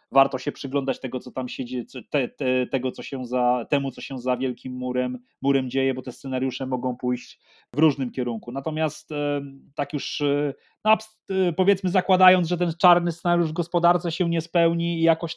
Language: Polish